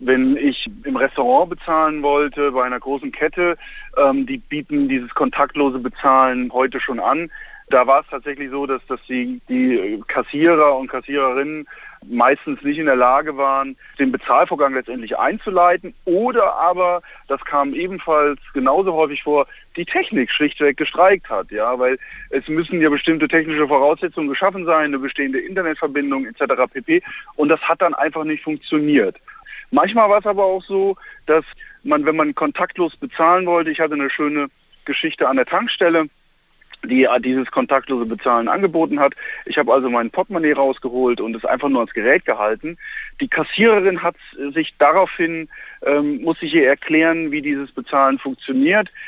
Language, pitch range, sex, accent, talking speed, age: German, 140-190 Hz, male, German, 160 wpm, 30-49